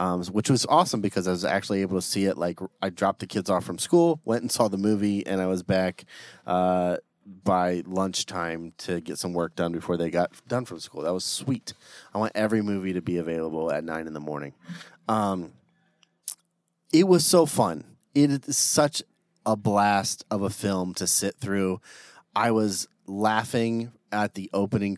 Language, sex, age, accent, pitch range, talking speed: English, male, 30-49, American, 95-120 Hz, 190 wpm